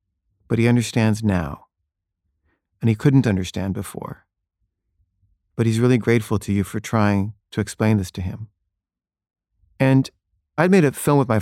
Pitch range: 95-130 Hz